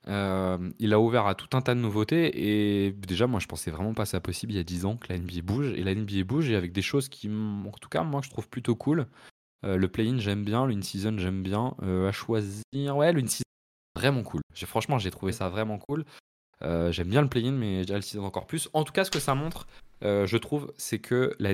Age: 20-39